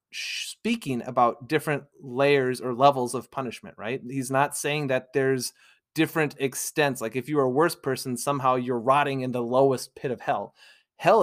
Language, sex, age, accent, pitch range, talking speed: English, male, 30-49, American, 130-160 Hz, 175 wpm